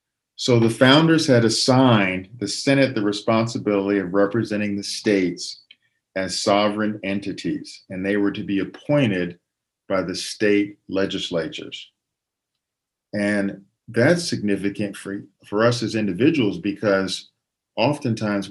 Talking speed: 115 wpm